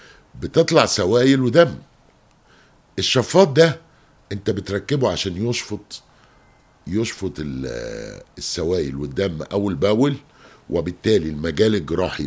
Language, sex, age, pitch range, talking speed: English, male, 50-69, 90-130 Hz, 85 wpm